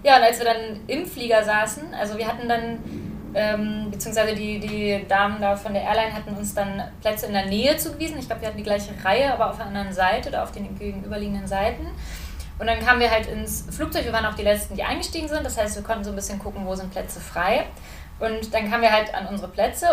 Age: 20-39